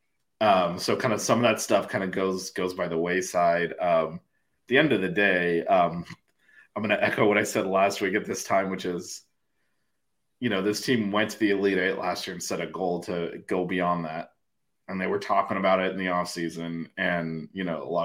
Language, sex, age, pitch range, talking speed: English, male, 30-49, 85-95 Hz, 235 wpm